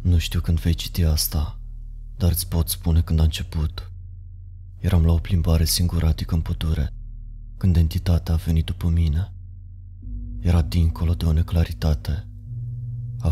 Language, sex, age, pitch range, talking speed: Romanian, male, 20-39, 85-105 Hz, 145 wpm